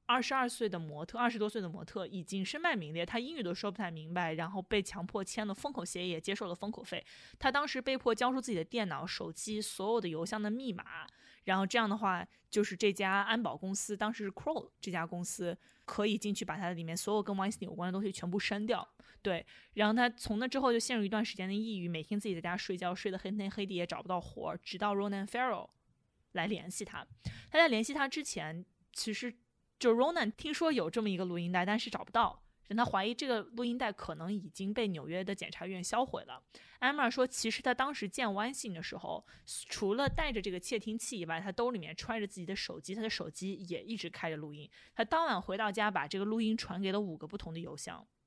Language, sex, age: Chinese, female, 20-39